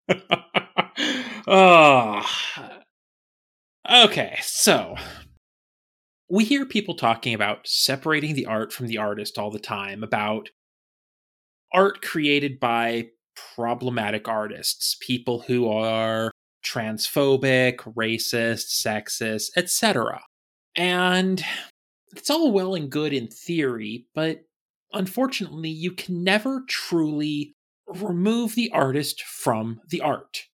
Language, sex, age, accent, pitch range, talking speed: English, male, 30-49, American, 120-195 Hz, 95 wpm